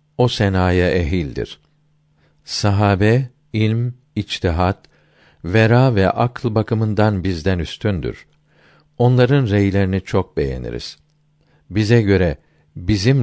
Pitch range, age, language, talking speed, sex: 90-135 Hz, 50-69, Turkish, 85 wpm, male